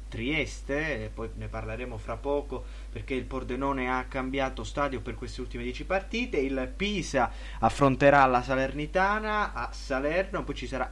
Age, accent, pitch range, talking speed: 20-39, native, 120-155 Hz, 150 wpm